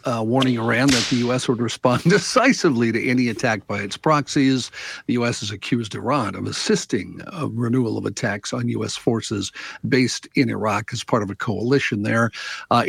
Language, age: English, 50-69